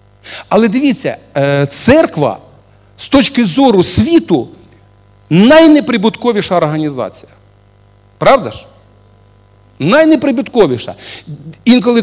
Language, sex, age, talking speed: Russian, male, 50-69, 65 wpm